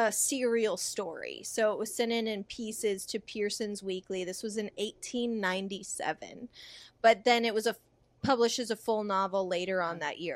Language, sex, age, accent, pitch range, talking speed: English, female, 20-39, American, 205-245 Hz, 170 wpm